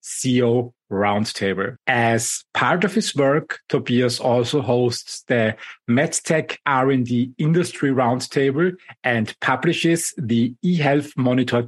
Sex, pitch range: male, 120-160 Hz